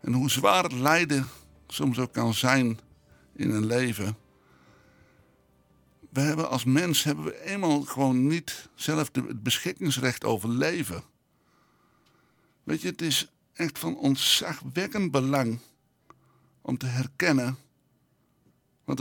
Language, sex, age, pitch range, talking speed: Dutch, male, 60-79, 120-150 Hz, 120 wpm